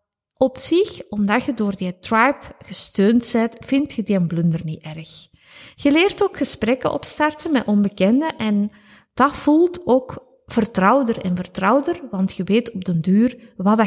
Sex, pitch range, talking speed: female, 190-270 Hz, 160 wpm